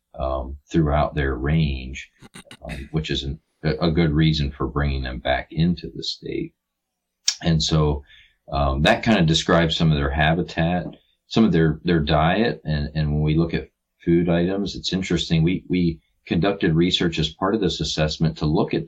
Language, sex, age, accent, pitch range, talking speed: English, male, 40-59, American, 75-85 Hz, 175 wpm